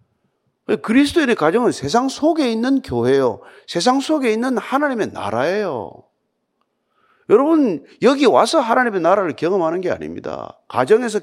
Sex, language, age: male, Korean, 40-59